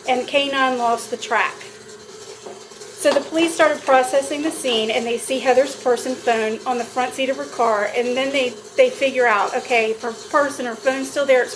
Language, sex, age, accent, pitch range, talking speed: English, female, 40-59, American, 245-310 Hz, 210 wpm